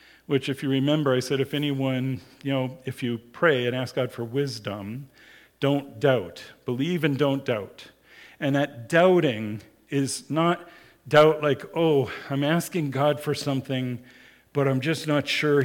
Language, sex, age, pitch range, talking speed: English, male, 50-69, 130-160 Hz, 160 wpm